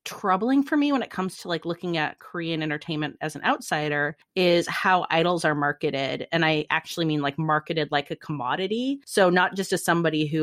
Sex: female